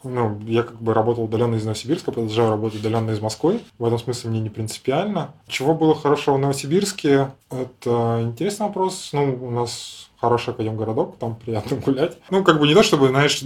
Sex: male